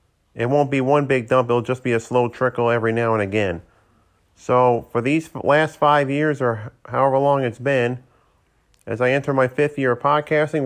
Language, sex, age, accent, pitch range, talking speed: English, male, 40-59, American, 120-140 Hz, 195 wpm